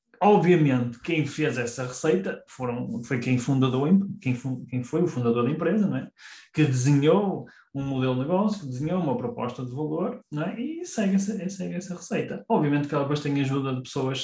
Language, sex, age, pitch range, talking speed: Portuguese, male, 20-39, 130-180 Hz, 190 wpm